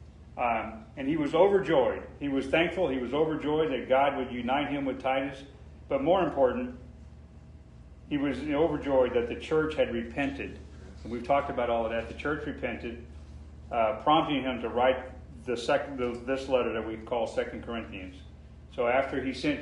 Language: English